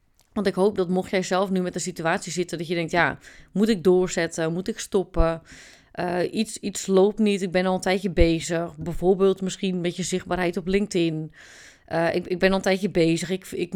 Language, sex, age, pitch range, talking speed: Dutch, female, 30-49, 170-205 Hz, 220 wpm